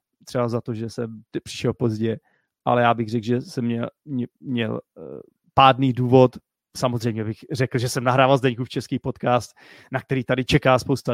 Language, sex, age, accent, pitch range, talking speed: Czech, male, 30-49, native, 115-135 Hz, 170 wpm